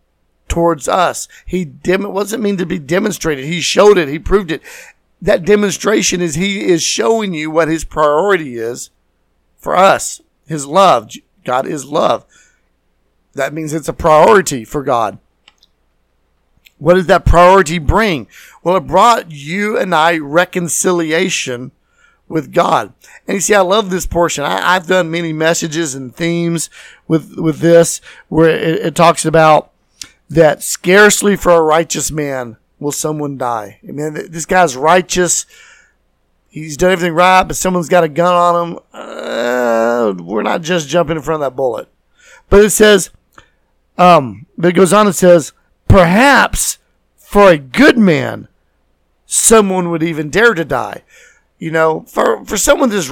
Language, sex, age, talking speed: English, male, 50-69, 160 wpm